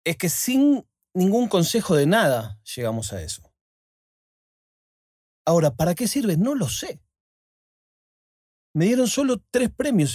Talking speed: 130 wpm